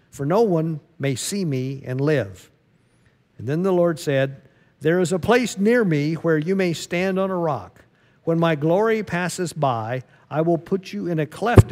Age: 50-69